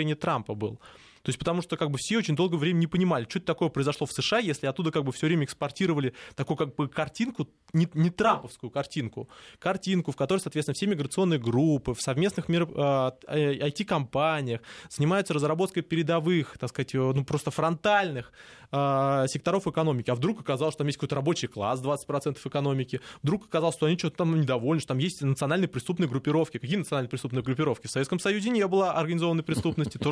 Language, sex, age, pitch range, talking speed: Russian, male, 20-39, 140-185 Hz, 185 wpm